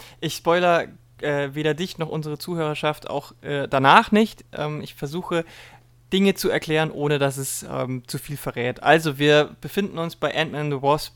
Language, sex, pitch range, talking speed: German, male, 140-170 Hz, 180 wpm